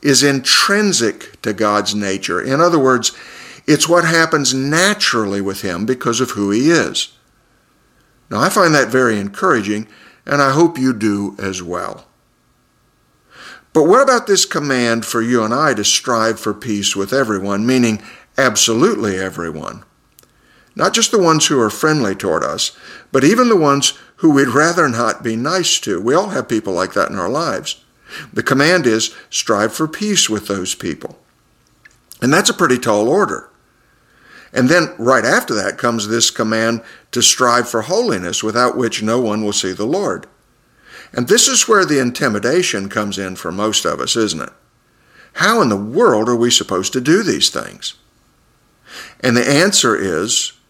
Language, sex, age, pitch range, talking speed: English, male, 50-69, 105-140 Hz, 170 wpm